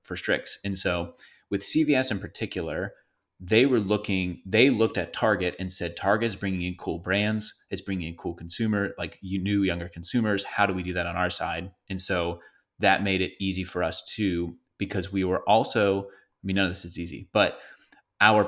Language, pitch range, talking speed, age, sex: English, 90-100 Hz, 200 wpm, 30-49, male